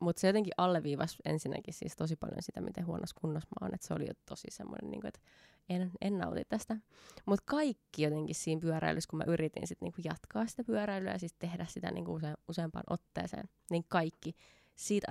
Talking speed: 200 wpm